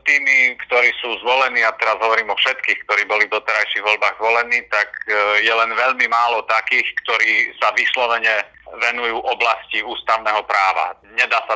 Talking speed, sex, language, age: 155 wpm, male, Slovak, 40-59